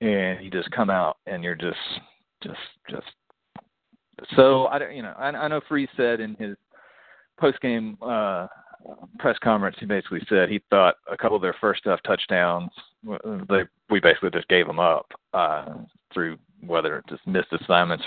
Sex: male